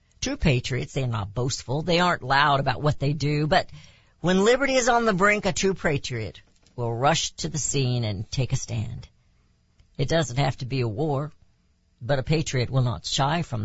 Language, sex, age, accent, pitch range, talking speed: English, female, 60-79, American, 115-160 Hz, 200 wpm